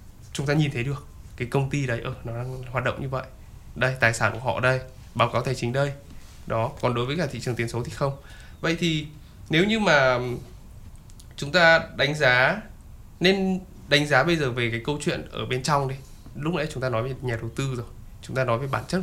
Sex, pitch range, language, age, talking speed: male, 120-160 Hz, Vietnamese, 20-39, 245 wpm